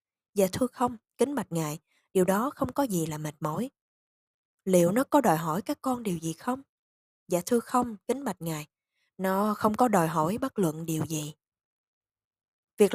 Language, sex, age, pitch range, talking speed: Vietnamese, female, 20-39, 165-240 Hz, 185 wpm